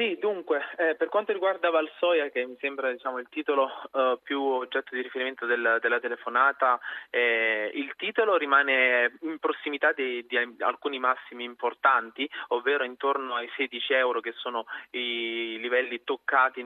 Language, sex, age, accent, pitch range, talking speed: Italian, male, 20-39, native, 120-150 Hz, 150 wpm